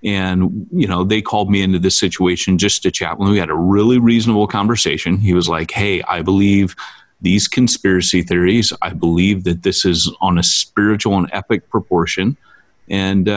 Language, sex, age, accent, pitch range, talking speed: English, male, 30-49, American, 90-115 Hz, 180 wpm